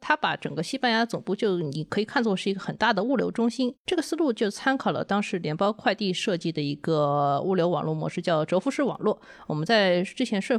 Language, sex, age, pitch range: Chinese, female, 20-39, 170-240 Hz